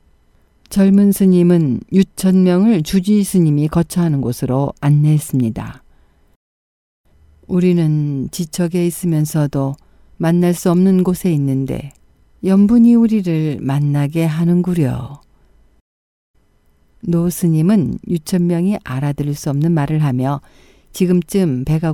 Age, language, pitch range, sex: 50-69, Korean, 135-175 Hz, female